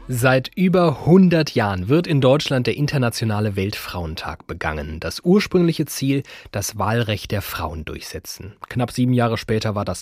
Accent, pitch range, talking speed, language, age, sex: German, 100-135 Hz, 150 wpm, German, 30-49, male